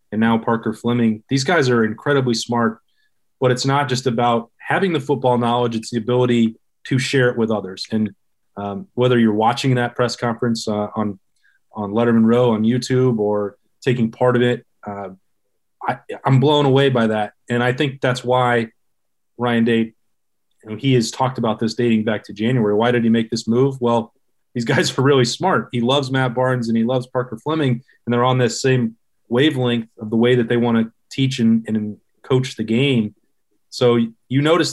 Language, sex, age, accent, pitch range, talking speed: English, male, 30-49, American, 110-125 Hz, 200 wpm